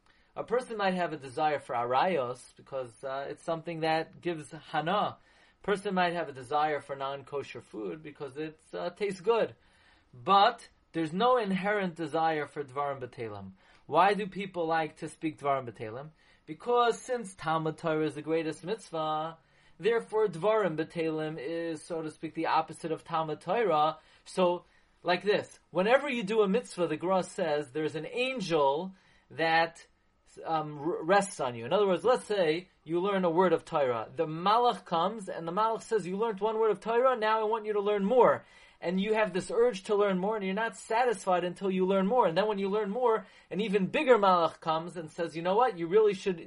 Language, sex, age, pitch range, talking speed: English, male, 30-49, 160-210 Hz, 190 wpm